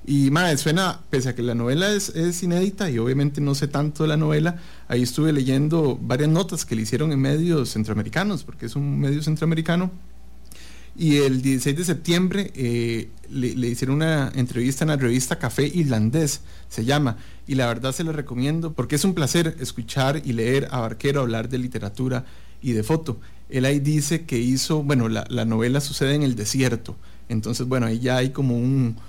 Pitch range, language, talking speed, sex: 120-150 Hz, English, 190 wpm, male